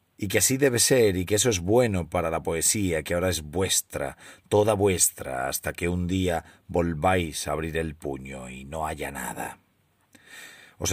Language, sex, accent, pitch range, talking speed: Spanish, male, Spanish, 85-100 Hz, 180 wpm